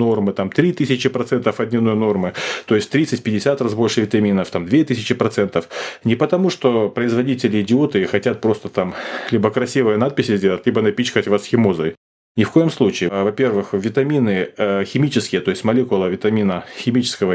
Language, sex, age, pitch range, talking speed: Russian, male, 20-39, 105-130 Hz, 150 wpm